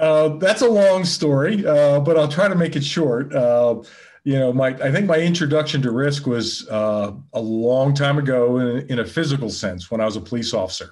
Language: English